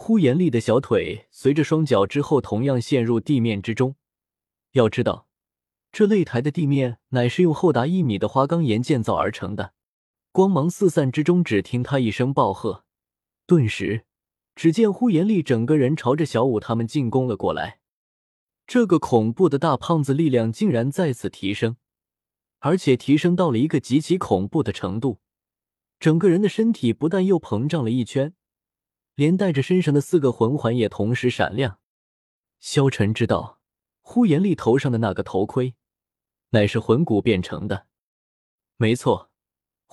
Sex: male